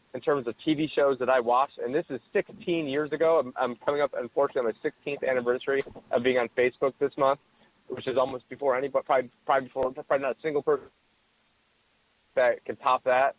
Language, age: English, 30-49